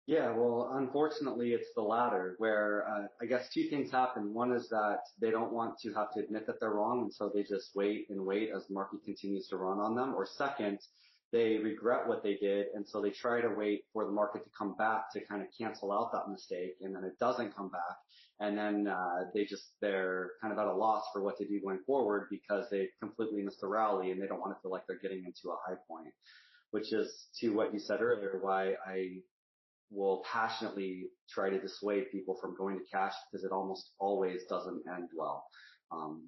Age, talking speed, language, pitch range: 30-49, 225 wpm, English, 95-110 Hz